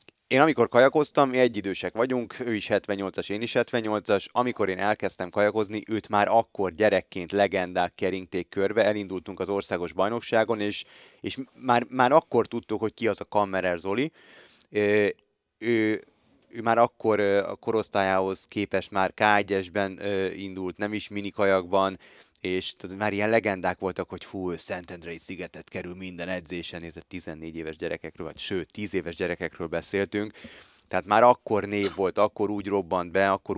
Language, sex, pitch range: Hungarian, male, 90-105 Hz